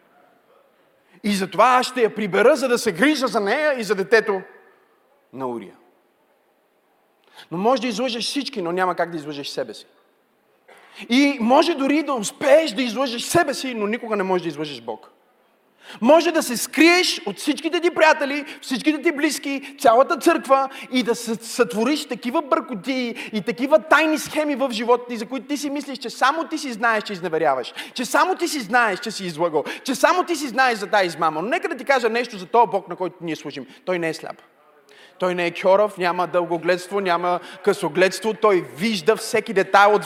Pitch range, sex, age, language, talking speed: 205-275 Hz, male, 30-49, Bulgarian, 190 wpm